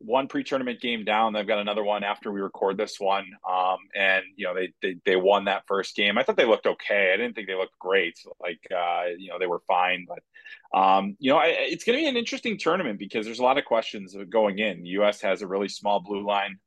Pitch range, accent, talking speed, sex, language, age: 95-110 Hz, American, 250 wpm, male, English, 30-49